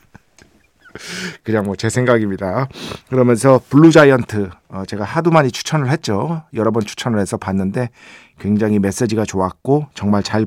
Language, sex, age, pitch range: Korean, male, 50-69, 105-145 Hz